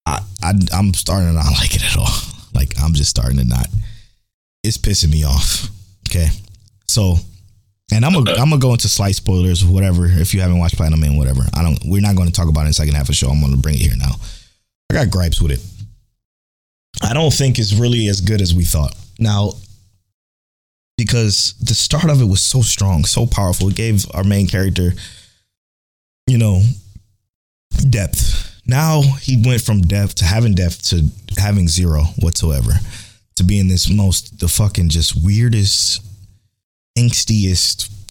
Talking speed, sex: 175 wpm, male